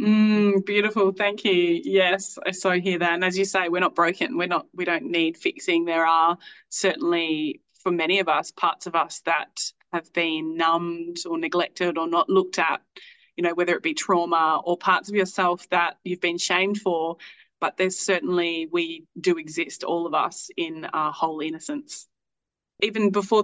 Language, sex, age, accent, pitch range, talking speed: English, female, 20-39, Australian, 180-230 Hz, 185 wpm